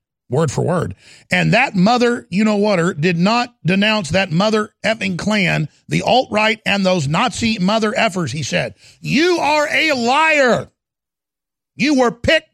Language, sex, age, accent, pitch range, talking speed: English, male, 50-69, American, 165-220 Hz, 155 wpm